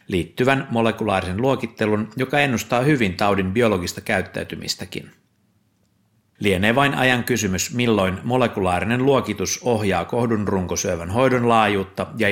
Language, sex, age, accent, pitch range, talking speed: Finnish, male, 60-79, native, 95-120 Hz, 105 wpm